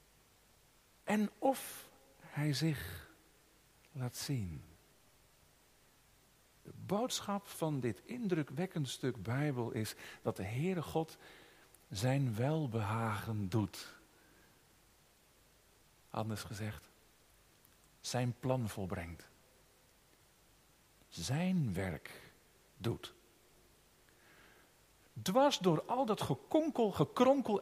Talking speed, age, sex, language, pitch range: 75 wpm, 50-69, male, Dutch, 115-165 Hz